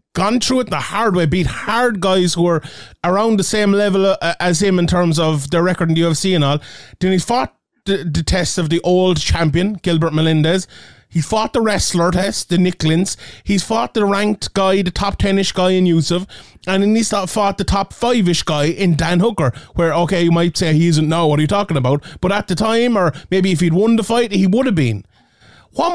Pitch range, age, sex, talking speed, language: 155-205 Hz, 30-49, male, 225 wpm, English